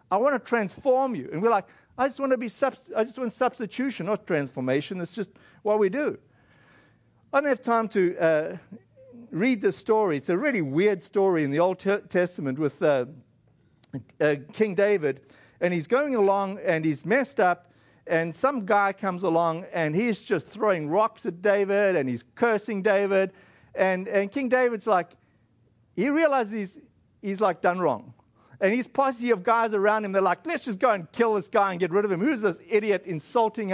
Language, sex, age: English, male, 50-69